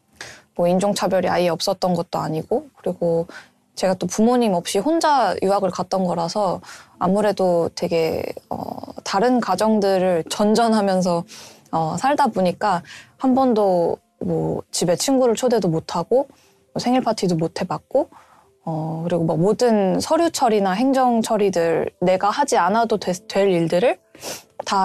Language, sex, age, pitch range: Korean, female, 20-39, 170-235 Hz